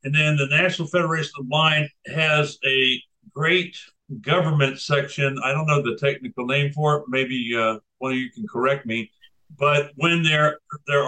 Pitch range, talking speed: 135-165 Hz, 180 wpm